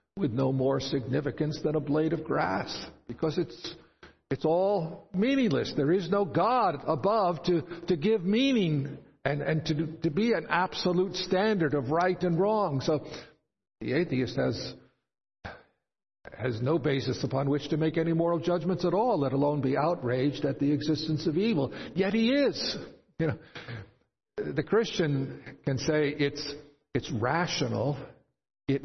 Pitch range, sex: 130-160 Hz, male